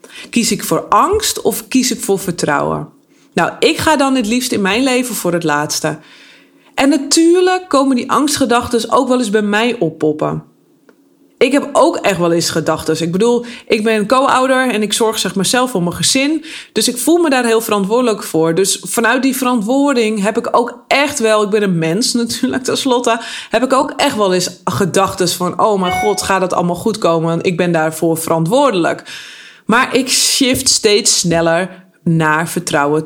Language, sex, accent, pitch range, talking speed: Dutch, female, Dutch, 180-250 Hz, 190 wpm